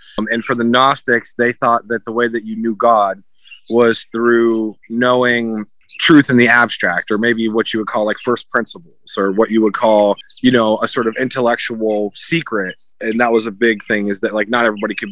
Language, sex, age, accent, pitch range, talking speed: English, male, 20-39, American, 110-120 Hz, 215 wpm